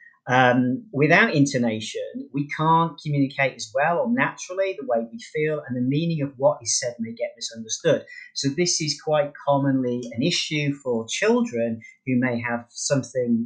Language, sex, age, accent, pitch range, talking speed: English, male, 30-49, British, 125-170 Hz, 165 wpm